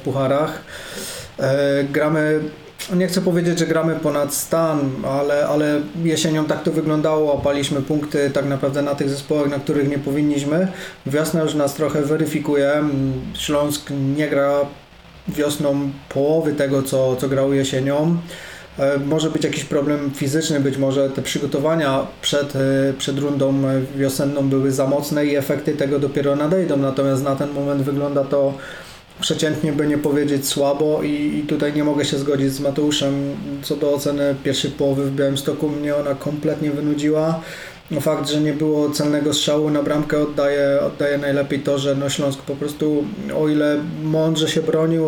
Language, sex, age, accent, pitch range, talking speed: Polish, male, 20-39, native, 140-155 Hz, 150 wpm